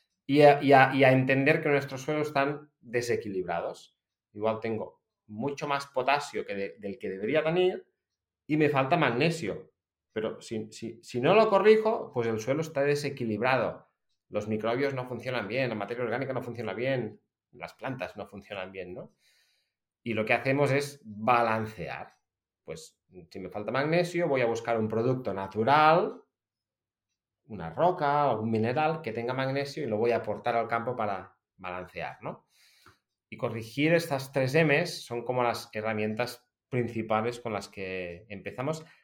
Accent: Spanish